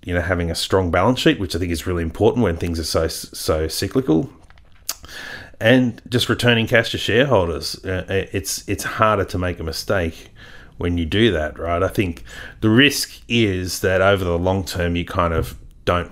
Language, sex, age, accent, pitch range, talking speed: English, male, 30-49, Australian, 80-95 Hz, 190 wpm